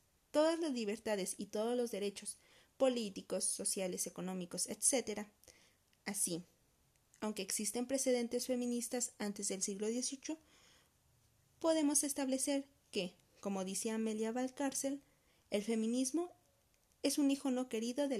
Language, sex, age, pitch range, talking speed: Spanish, female, 40-59, 205-275 Hz, 115 wpm